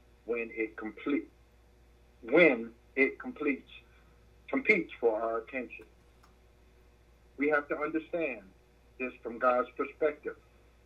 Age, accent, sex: 50-69, American, male